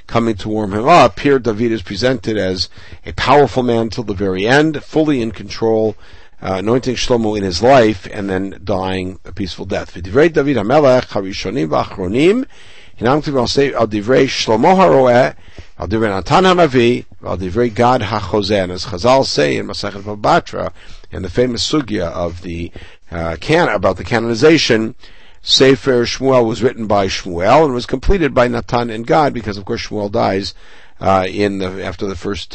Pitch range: 95-125 Hz